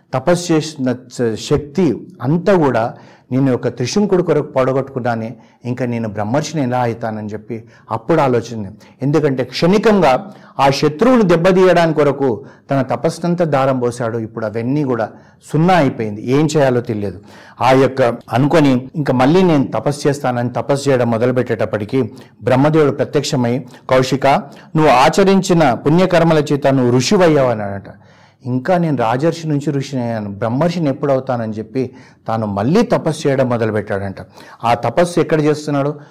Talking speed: 120 wpm